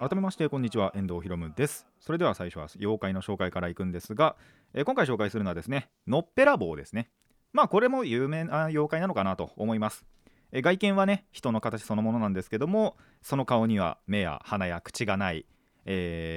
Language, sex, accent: Japanese, male, native